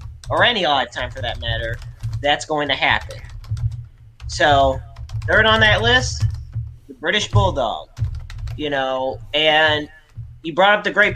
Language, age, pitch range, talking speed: English, 30-49, 115-170 Hz, 145 wpm